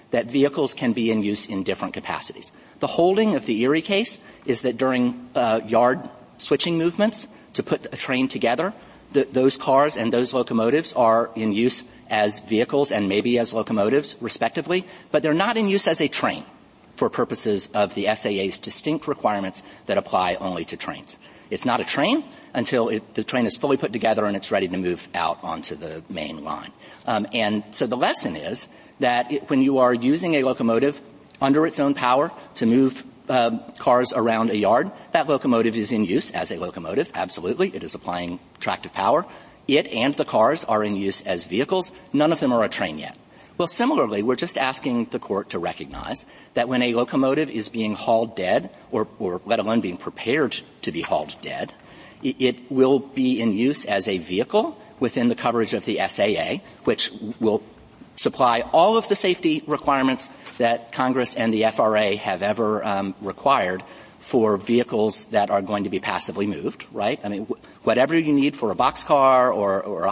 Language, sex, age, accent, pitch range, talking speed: English, male, 40-59, American, 110-140 Hz, 185 wpm